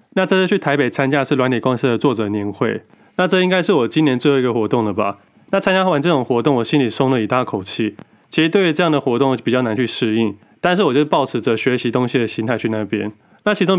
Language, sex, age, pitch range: Chinese, male, 20-39, 110-150 Hz